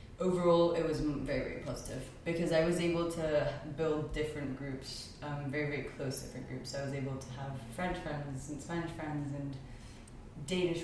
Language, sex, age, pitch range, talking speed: English, female, 20-39, 135-155 Hz, 185 wpm